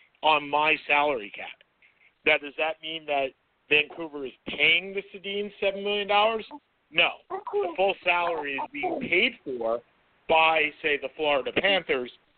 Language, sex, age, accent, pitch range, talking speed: English, male, 50-69, American, 145-195 Hz, 145 wpm